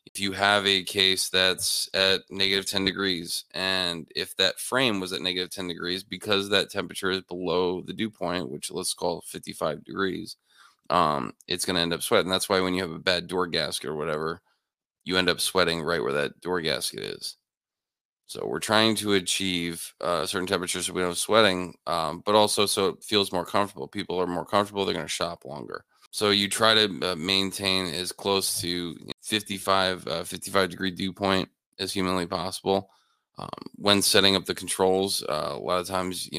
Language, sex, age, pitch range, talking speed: English, male, 20-39, 90-95 Hz, 195 wpm